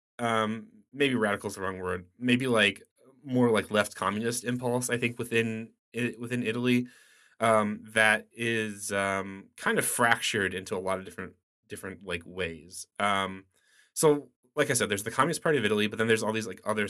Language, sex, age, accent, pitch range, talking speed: English, male, 20-39, American, 95-120 Hz, 190 wpm